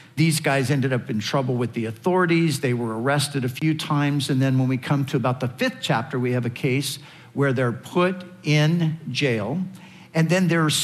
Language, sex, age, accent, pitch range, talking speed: English, male, 50-69, American, 130-160 Hz, 205 wpm